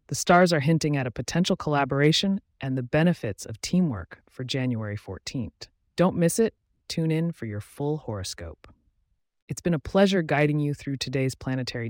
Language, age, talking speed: English, 30-49, 170 wpm